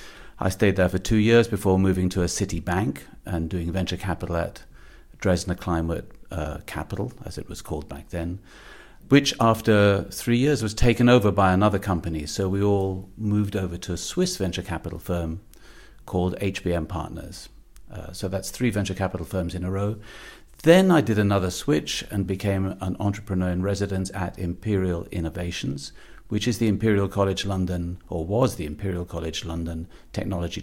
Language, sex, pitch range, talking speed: Slovak, male, 85-100 Hz, 170 wpm